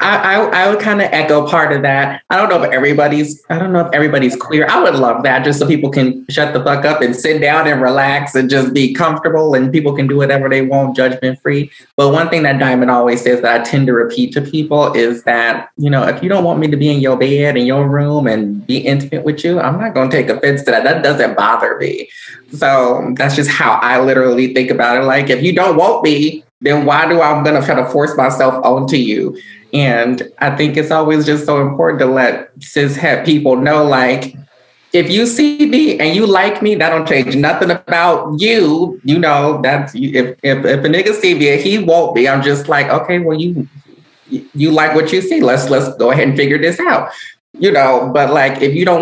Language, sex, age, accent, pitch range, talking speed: English, male, 20-39, American, 135-165 Hz, 235 wpm